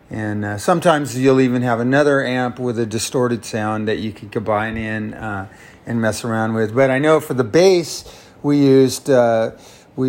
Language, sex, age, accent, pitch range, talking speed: English, male, 30-49, American, 120-145 Hz, 190 wpm